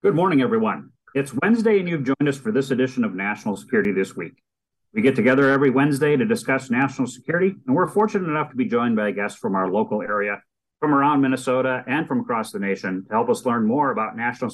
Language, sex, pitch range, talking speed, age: English, male, 130-200 Hz, 225 wpm, 40-59